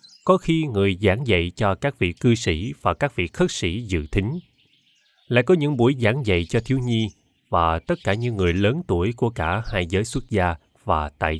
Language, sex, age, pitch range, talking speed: Vietnamese, male, 30-49, 90-135 Hz, 215 wpm